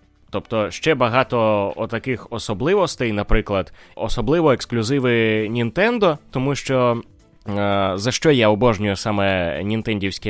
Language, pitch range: Ukrainian, 95-125 Hz